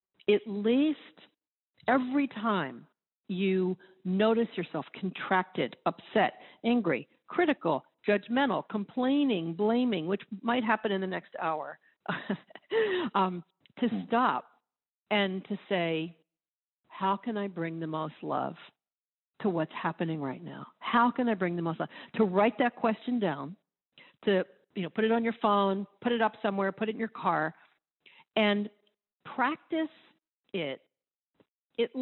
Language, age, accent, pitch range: English, 50-69, American, 180-230 Hz